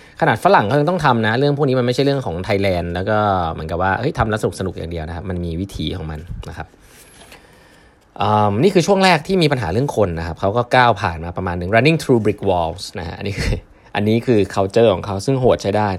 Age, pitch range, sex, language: 20-39, 95-120 Hz, male, Thai